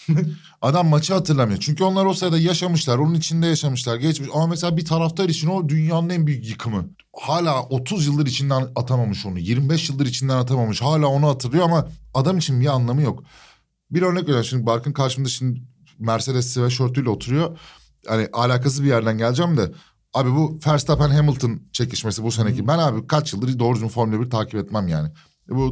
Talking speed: 180 wpm